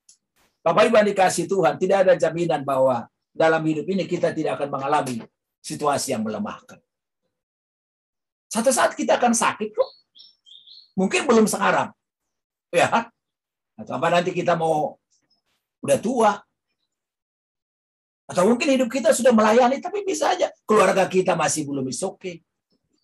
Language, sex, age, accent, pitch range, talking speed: Indonesian, male, 50-69, native, 170-255 Hz, 130 wpm